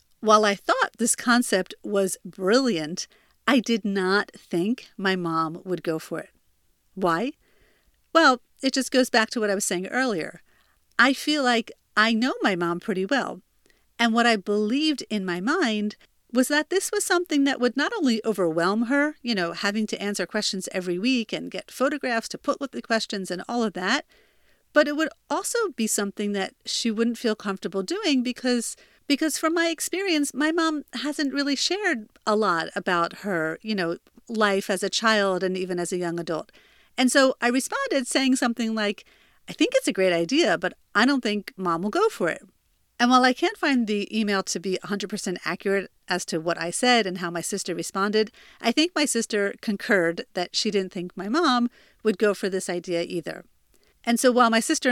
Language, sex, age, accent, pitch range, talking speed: English, female, 50-69, American, 195-265 Hz, 195 wpm